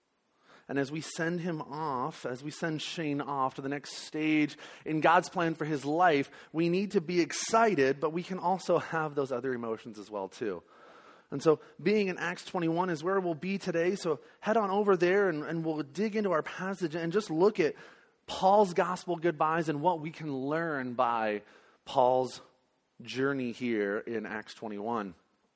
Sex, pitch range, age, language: male, 135-180 Hz, 30-49, English